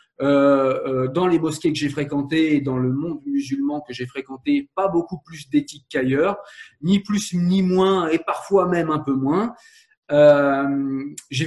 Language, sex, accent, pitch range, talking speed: French, male, French, 140-195 Hz, 165 wpm